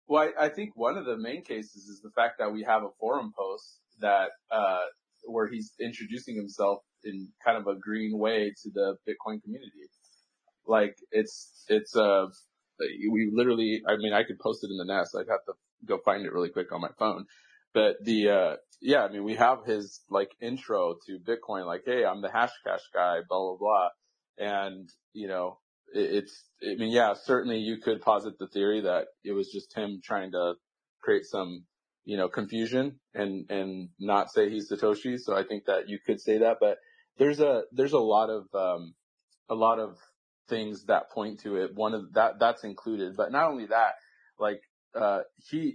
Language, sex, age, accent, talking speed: English, male, 30-49, American, 195 wpm